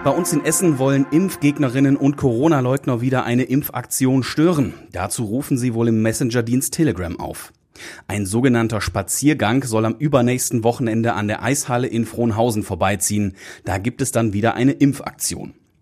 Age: 30-49